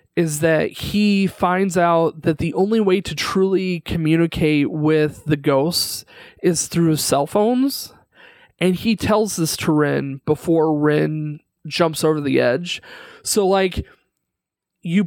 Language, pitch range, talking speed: English, 150-180 Hz, 135 wpm